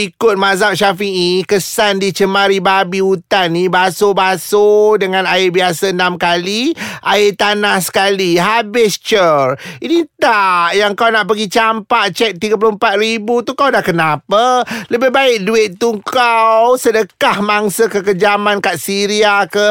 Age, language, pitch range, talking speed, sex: 30-49, Malay, 190-230 Hz, 135 wpm, male